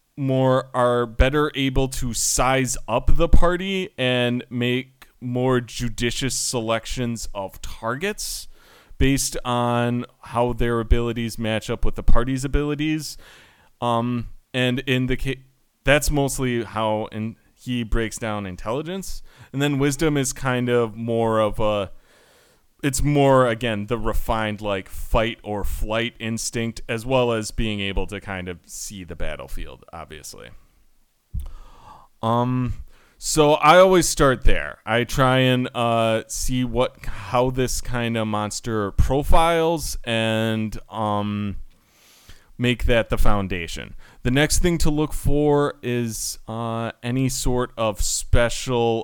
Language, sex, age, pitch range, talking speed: English, male, 30-49, 110-130 Hz, 130 wpm